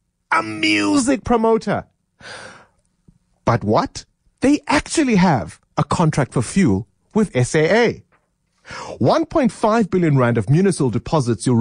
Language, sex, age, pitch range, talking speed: English, male, 30-49, 125-205 Hz, 110 wpm